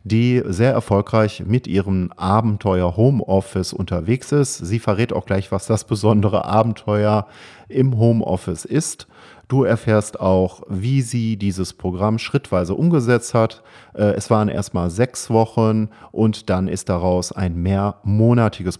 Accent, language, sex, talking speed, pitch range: German, German, male, 135 wpm, 95-115 Hz